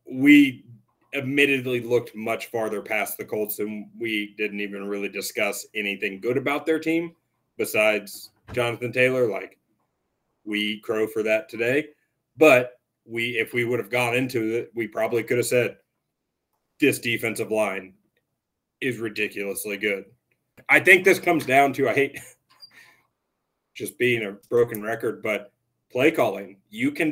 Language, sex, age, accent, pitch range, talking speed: English, male, 30-49, American, 110-135 Hz, 145 wpm